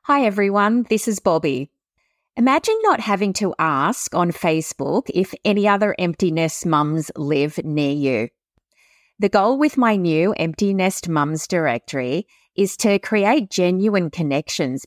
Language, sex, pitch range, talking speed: English, female, 165-220 Hz, 140 wpm